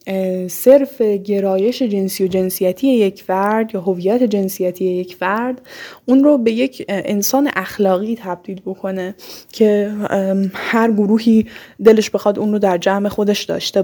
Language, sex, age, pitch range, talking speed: Persian, female, 10-29, 185-210 Hz, 135 wpm